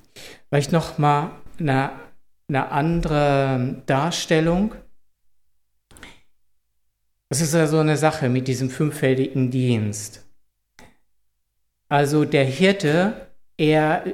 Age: 60-79